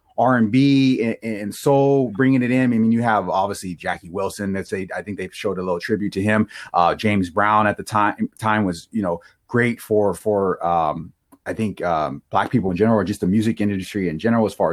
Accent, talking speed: American, 230 wpm